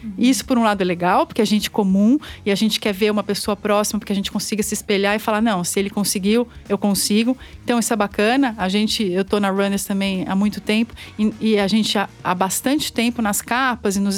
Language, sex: Portuguese, female